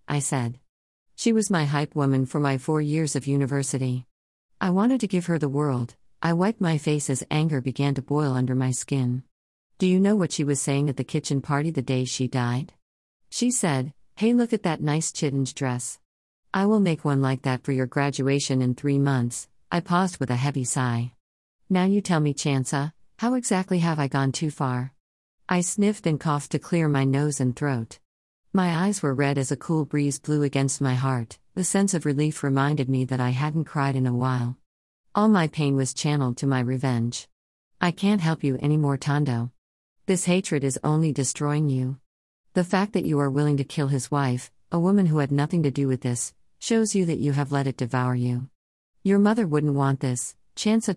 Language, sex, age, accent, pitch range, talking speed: English, female, 50-69, American, 130-165 Hz, 205 wpm